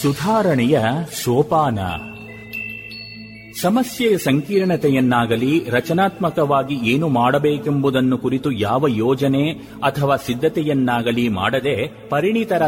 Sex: male